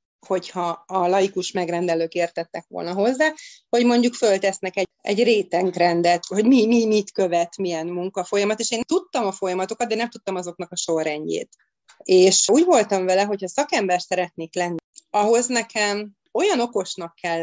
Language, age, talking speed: Hungarian, 30-49, 150 wpm